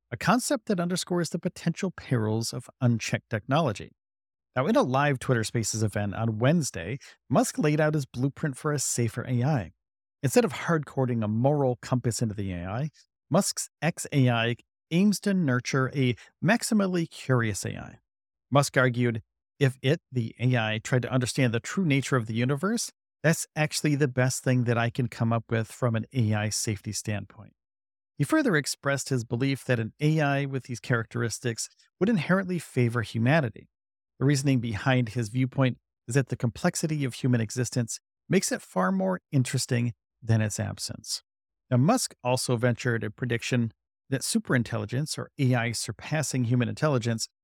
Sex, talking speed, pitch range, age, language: male, 160 wpm, 115-150 Hz, 40-59, English